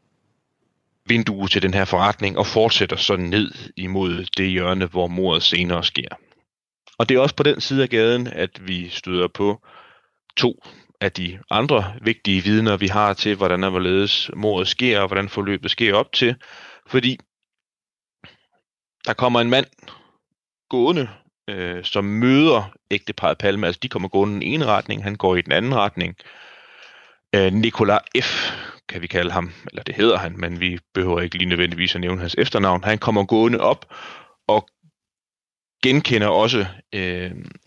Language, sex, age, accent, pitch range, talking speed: Danish, male, 30-49, native, 90-110 Hz, 165 wpm